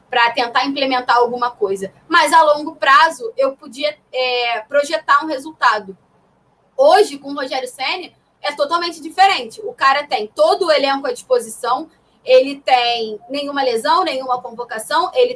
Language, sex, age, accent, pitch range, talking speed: Portuguese, female, 20-39, Brazilian, 250-320 Hz, 145 wpm